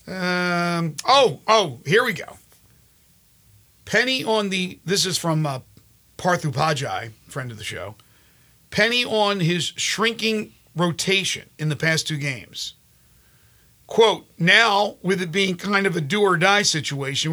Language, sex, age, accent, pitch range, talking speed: English, male, 50-69, American, 145-185 Hz, 140 wpm